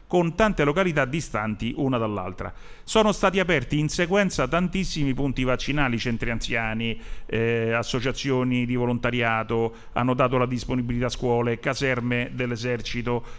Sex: male